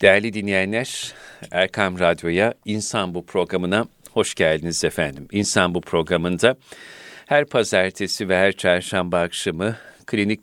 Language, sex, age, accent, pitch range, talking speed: Turkish, male, 40-59, native, 85-100 Hz, 115 wpm